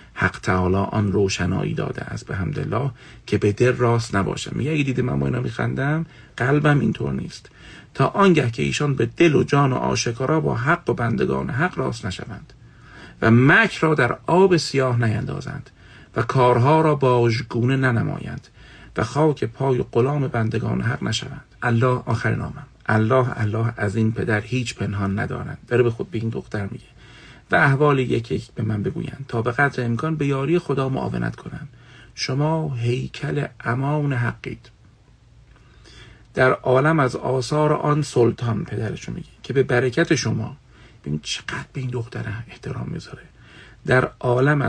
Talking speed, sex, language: 150 wpm, male, Persian